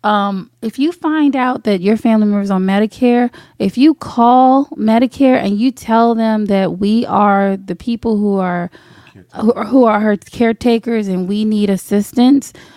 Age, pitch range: 20-39, 185-235 Hz